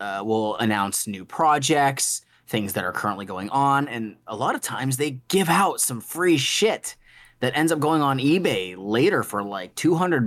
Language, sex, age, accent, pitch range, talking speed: English, male, 20-39, American, 110-145 Hz, 195 wpm